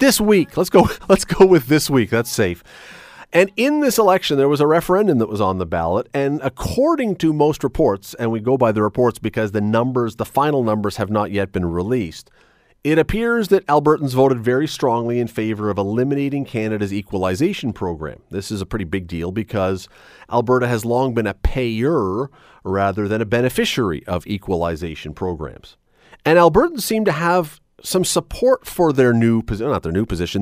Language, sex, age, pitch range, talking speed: English, male, 40-59, 105-155 Hz, 185 wpm